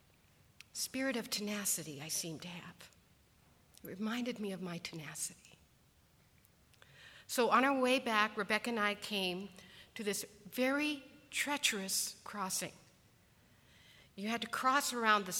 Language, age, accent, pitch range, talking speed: English, 50-69, American, 200-260 Hz, 130 wpm